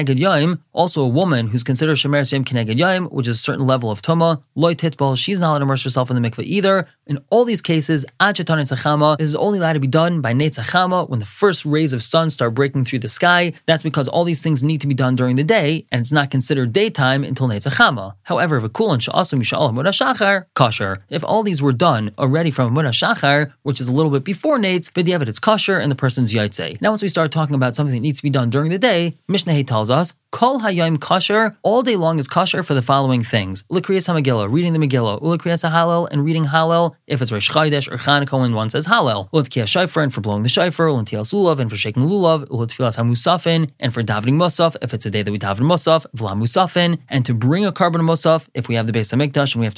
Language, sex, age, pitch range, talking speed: English, male, 20-39, 130-170 Hz, 225 wpm